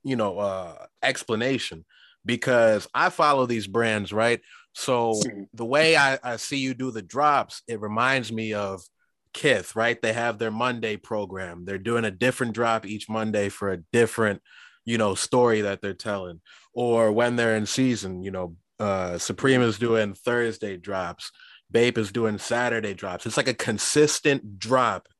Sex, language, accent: male, English, American